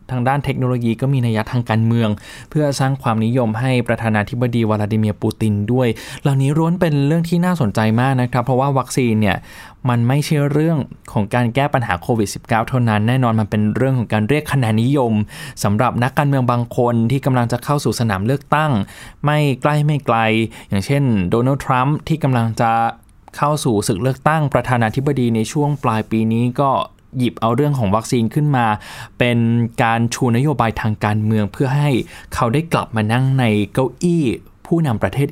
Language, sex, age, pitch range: Thai, male, 20-39, 110-145 Hz